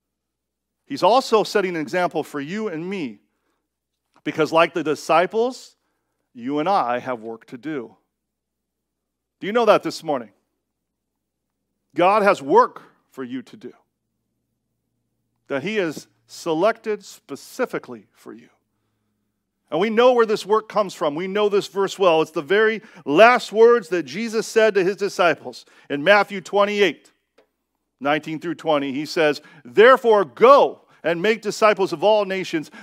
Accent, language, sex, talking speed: American, English, male, 145 wpm